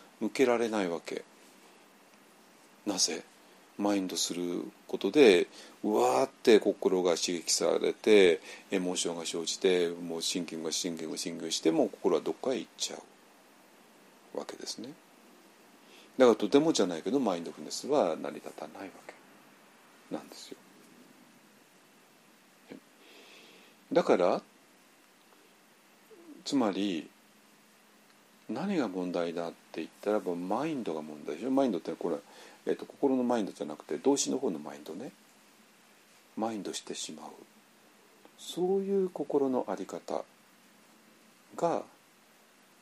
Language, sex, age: Japanese, male, 40-59